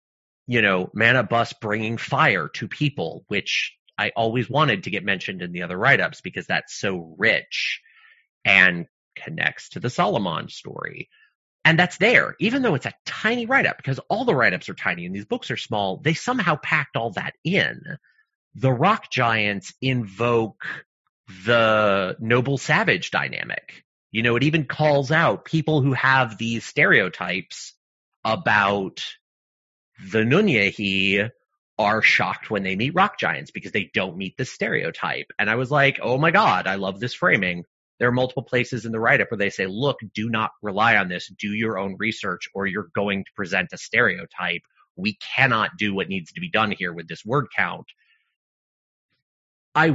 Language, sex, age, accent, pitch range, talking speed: English, male, 30-49, American, 100-145 Hz, 170 wpm